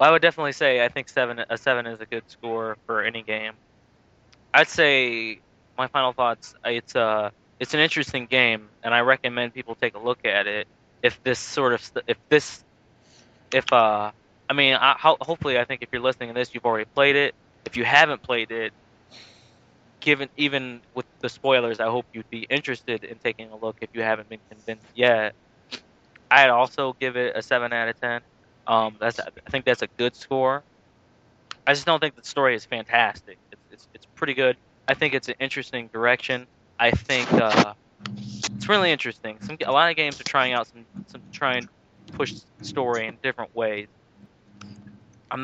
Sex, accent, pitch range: male, American, 115-135 Hz